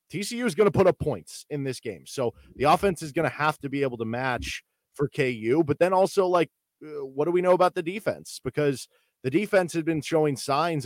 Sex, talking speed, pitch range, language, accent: male, 230 wpm, 125-150 Hz, English, American